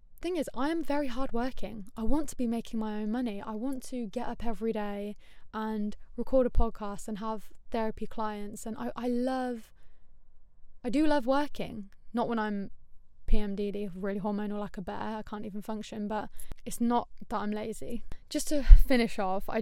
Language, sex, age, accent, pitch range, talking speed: English, female, 10-29, British, 210-240 Hz, 185 wpm